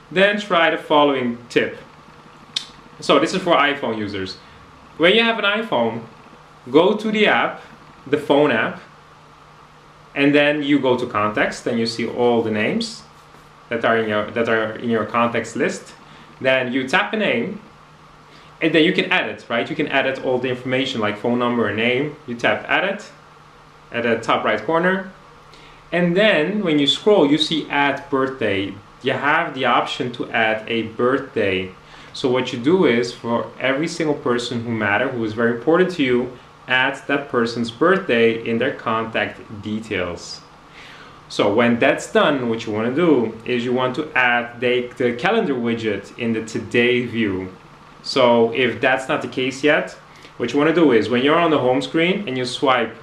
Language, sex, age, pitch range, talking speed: English, male, 30-49, 115-150 Hz, 180 wpm